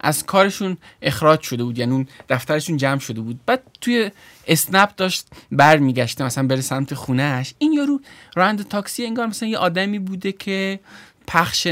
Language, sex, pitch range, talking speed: Persian, male, 140-220 Hz, 160 wpm